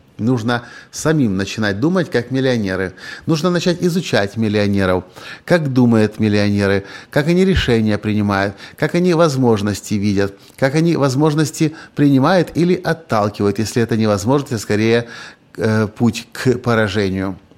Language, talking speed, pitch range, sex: Russian, 125 wpm, 100-135 Hz, male